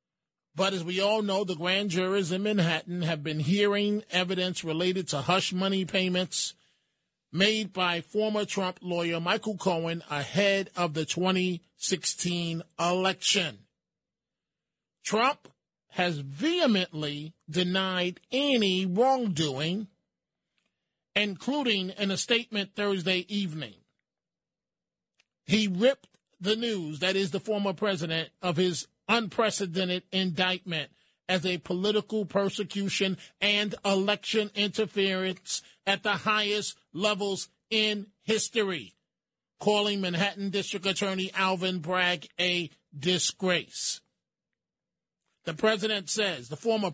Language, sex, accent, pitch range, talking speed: English, male, American, 180-205 Hz, 105 wpm